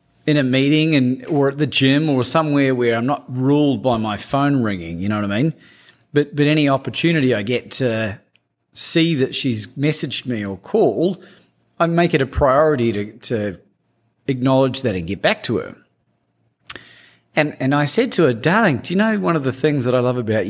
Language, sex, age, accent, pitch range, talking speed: English, male, 40-59, Australian, 110-150 Hz, 200 wpm